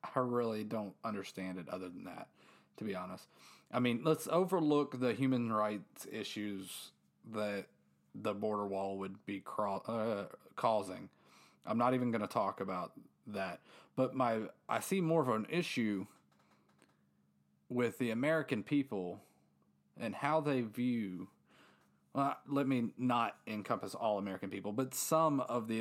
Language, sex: English, male